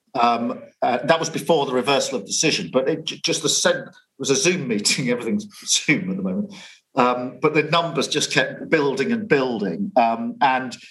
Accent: British